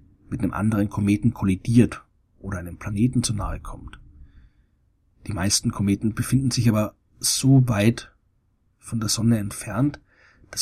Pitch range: 100-120 Hz